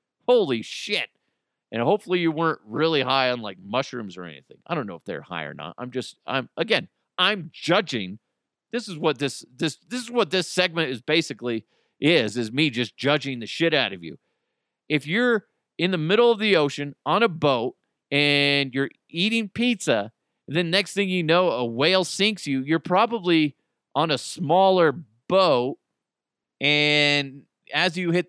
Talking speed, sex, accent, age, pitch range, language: 175 wpm, male, American, 40-59, 135-210 Hz, English